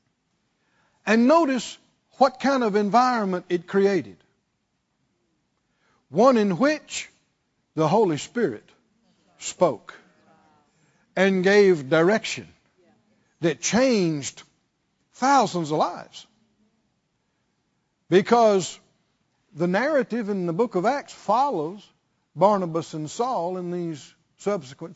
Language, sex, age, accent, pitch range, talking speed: English, male, 60-79, American, 170-240 Hz, 90 wpm